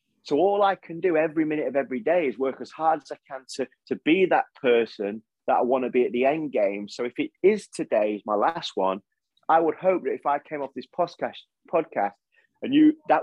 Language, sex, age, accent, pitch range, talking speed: English, male, 30-49, British, 125-175 Hz, 240 wpm